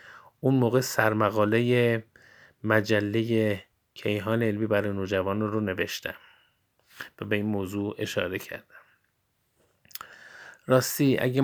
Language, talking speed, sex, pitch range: Persian, 95 wpm, male, 100-115 Hz